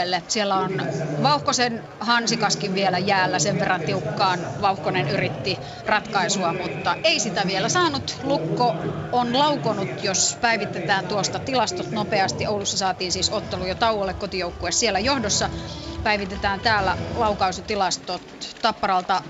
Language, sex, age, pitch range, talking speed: Finnish, female, 30-49, 185-220 Hz, 120 wpm